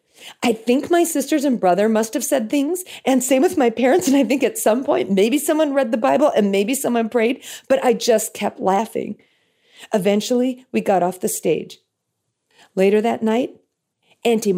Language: English